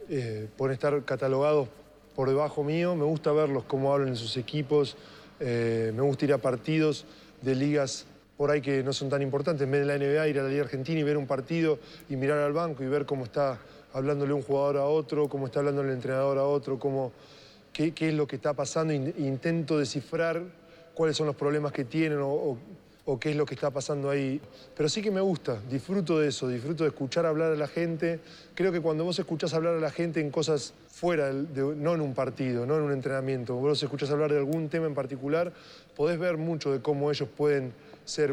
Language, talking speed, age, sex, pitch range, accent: Spanish, 220 wpm, 20-39, male, 135-155 Hz, Argentinian